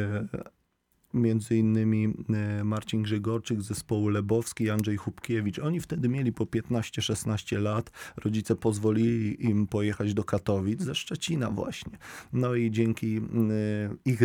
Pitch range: 105-120 Hz